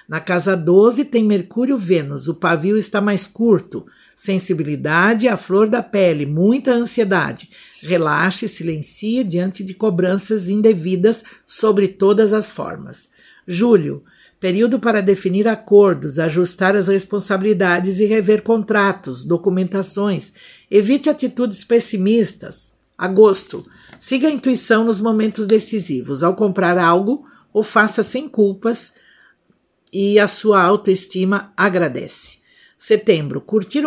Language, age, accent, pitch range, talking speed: Portuguese, 50-69, Brazilian, 180-220 Hz, 115 wpm